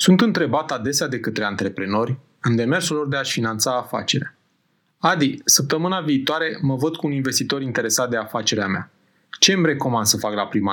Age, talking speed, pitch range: 30-49, 180 wpm, 115-155 Hz